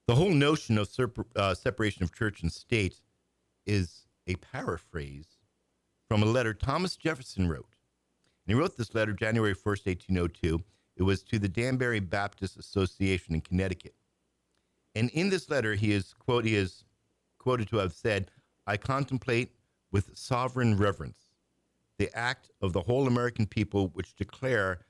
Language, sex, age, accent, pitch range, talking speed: English, male, 50-69, American, 95-120 Hz, 145 wpm